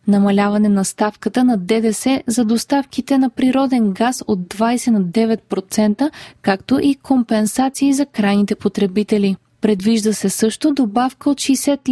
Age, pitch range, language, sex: 20-39, 205-260 Hz, Bulgarian, female